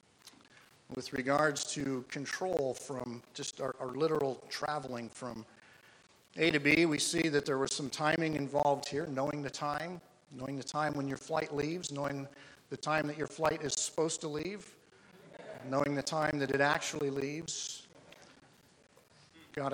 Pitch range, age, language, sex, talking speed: 135-155 Hz, 50-69, English, male, 155 wpm